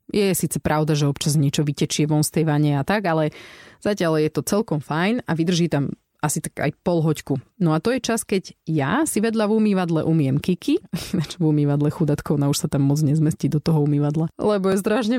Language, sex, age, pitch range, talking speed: Slovak, female, 30-49, 150-185 Hz, 215 wpm